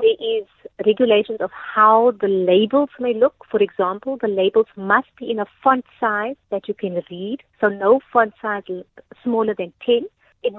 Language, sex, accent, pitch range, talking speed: English, female, Indian, 195-235 Hz, 175 wpm